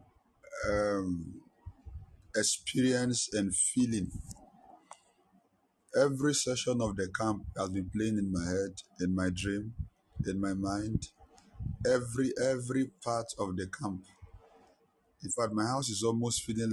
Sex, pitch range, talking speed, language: male, 95-115 Hz, 120 wpm, English